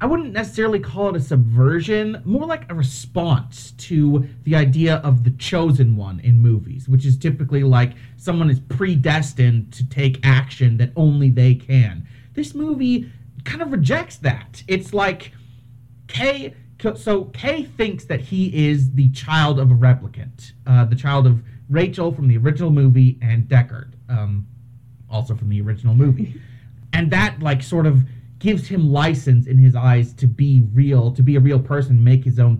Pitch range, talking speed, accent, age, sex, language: 120-160 Hz, 170 wpm, American, 30-49, male, English